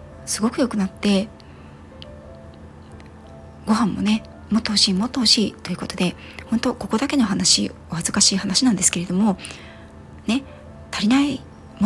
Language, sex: Japanese, female